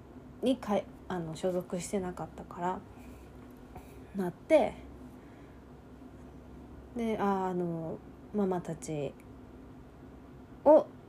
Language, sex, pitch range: Japanese, female, 170-220 Hz